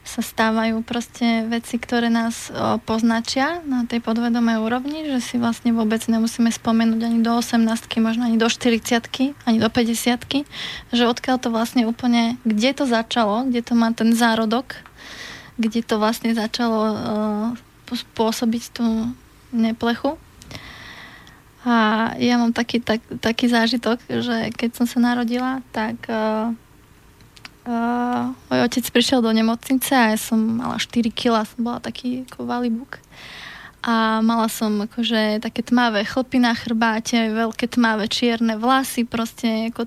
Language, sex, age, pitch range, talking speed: Slovak, female, 20-39, 225-245 Hz, 140 wpm